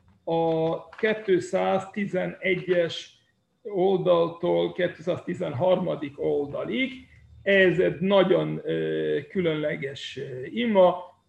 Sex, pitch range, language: male, 160-195 Hz, Hungarian